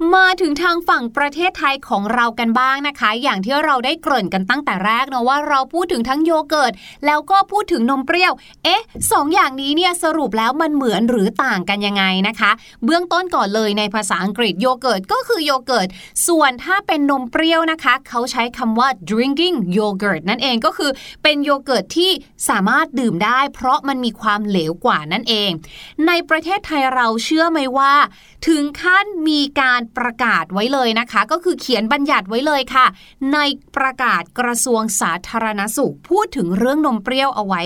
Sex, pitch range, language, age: female, 220-305 Hz, Thai, 20-39